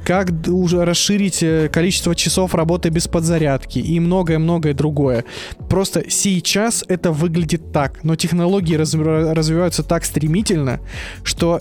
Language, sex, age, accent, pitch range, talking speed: Russian, male, 20-39, native, 150-180 Hz, 110 wpm